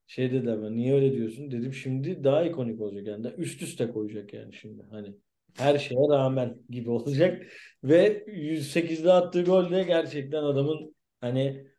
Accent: native